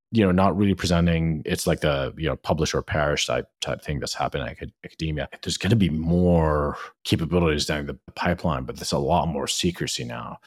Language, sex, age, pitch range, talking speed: English, male, 30-49, 75-100 Hz, 205 wpm